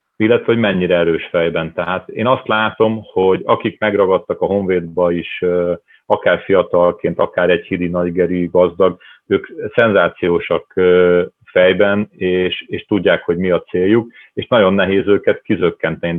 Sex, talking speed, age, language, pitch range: male, 135 wpm, 40-59, Hungarian, 90-120 Hz